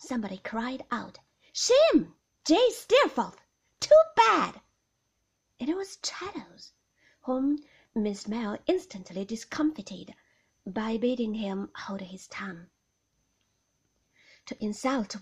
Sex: female